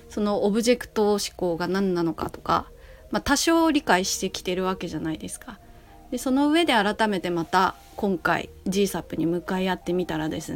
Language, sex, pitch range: Japanese, female, 175-260 Hz